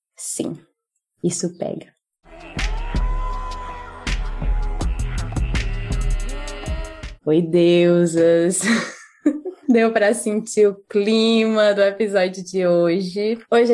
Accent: Brazilian